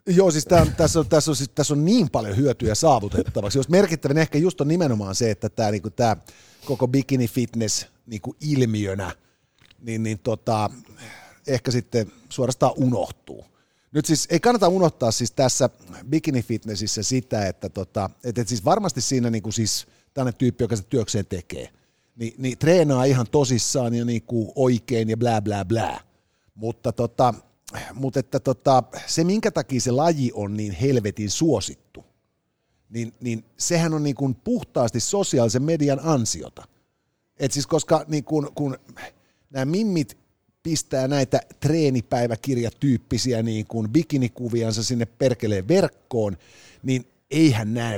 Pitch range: 110-140 Hz